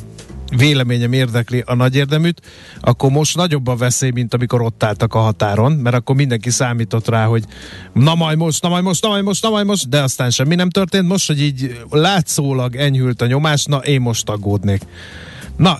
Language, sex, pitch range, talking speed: Hungarian, male, 120-150 Hz, 195 wpm